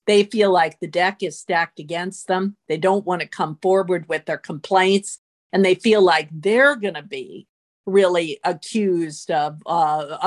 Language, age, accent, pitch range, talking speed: English, 50-69, American, 175-215 Hz, 175 wpm